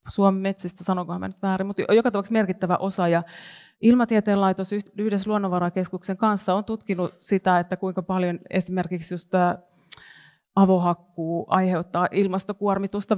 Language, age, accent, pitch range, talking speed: Finnish, 30-49, native, 175-195 Hz, 120 wpm